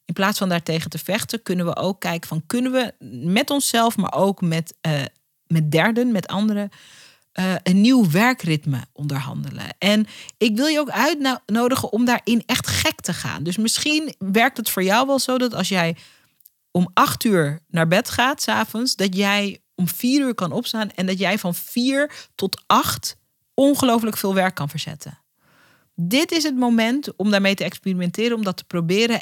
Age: 40-59